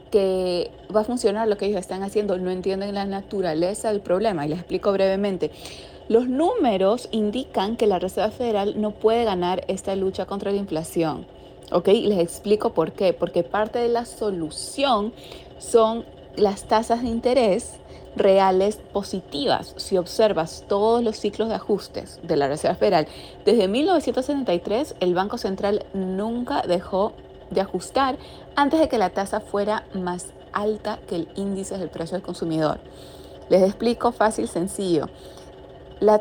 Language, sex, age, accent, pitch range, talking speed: Spanish, female, 30-49, Venezuelan, 180-225 Hz, 150 wpm